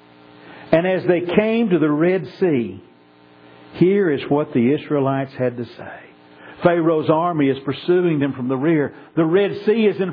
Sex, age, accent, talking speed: male, 50-69, American, 170 wpm